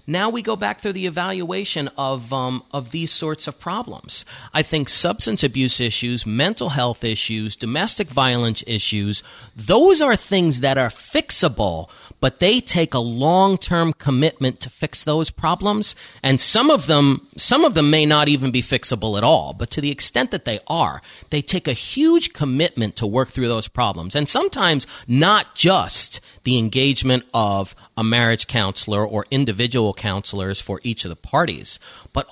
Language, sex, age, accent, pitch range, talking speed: English, male, 30-49, American, 110-155 Hz, 170 wpm